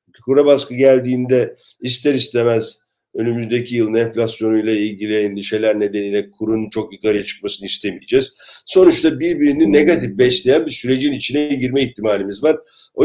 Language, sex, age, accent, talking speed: Turkish, male, 50-69, native, 125 wpm